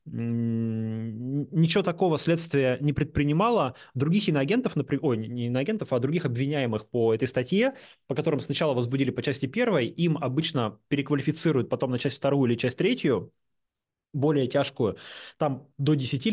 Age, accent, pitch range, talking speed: 20-39, native, 115-155 Hz, 140 wpm